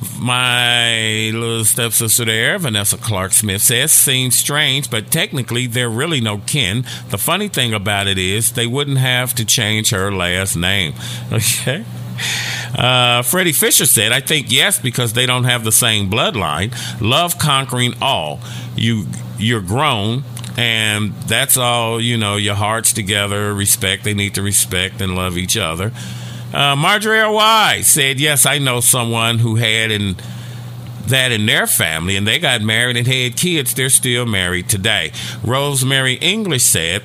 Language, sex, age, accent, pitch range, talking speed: English, male, 50-69, American, 110-140 Hz, 155 wpm